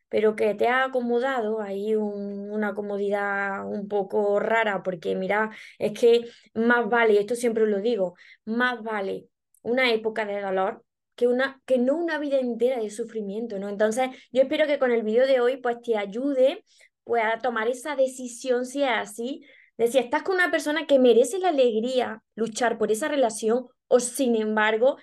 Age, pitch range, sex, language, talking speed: 20-39, 215-270 Hz, female, Spanish, 180 wpm